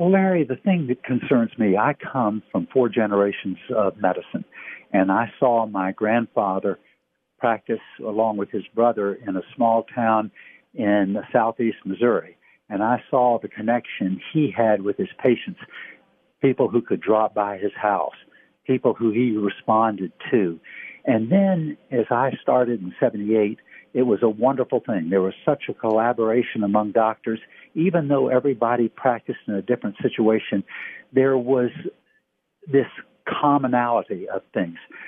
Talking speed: 145 wpm